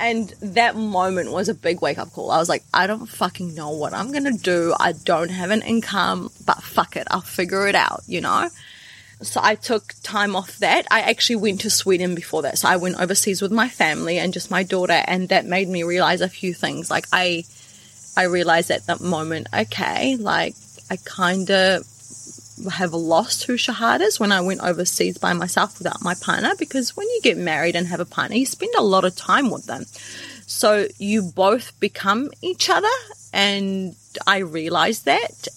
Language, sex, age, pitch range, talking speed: English, female, 20-39, 170-215 Hz, 200 wpm